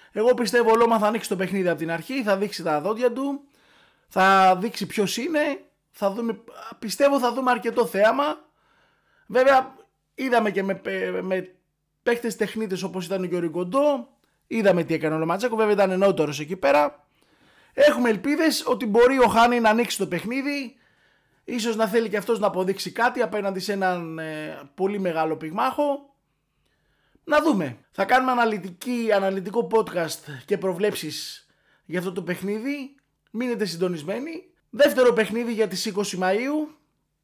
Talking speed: 155 wpm